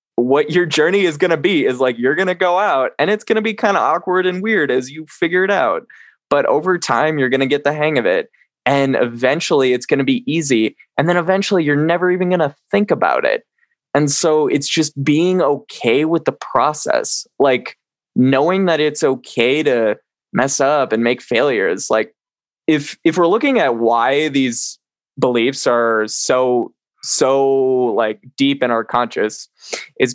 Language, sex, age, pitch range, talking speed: English, male, 20-39, 125-170 Hz, 190 wpm